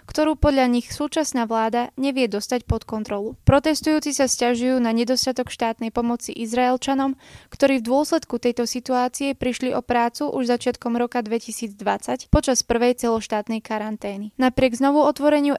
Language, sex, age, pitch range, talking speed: Slovak, female, 20-39, 235-270 Hz, 140 wpm